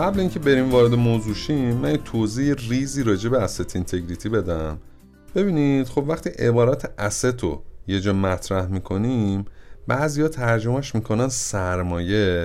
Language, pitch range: Persian, 95-125 Hz